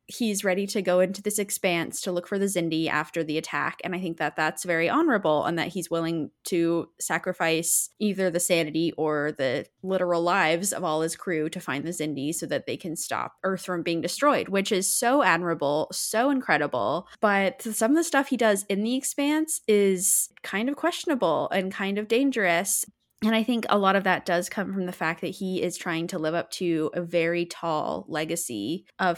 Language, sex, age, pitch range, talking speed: English, female, 20-39, 165-205 Hz, 210 wpm